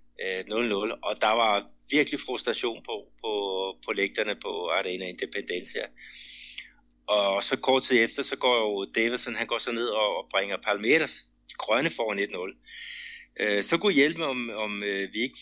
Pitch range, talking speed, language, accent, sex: 100-135 Hz, 140 wpm, Danish, native, male